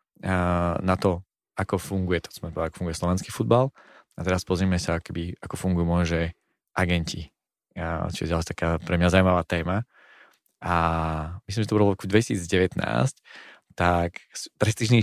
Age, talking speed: 20-39, 155 wpm